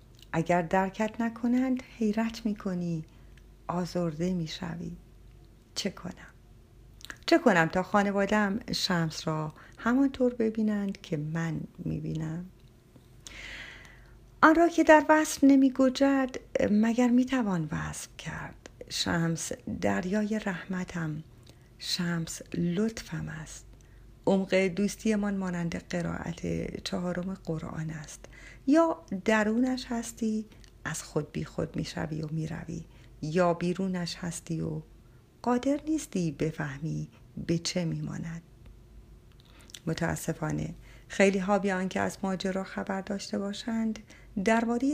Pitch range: 155-215 Hz